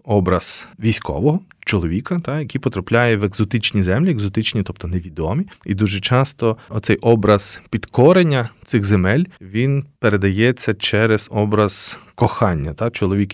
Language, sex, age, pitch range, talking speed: Ukrainian, male, 30-49, 95-115 Hz, 120 wpm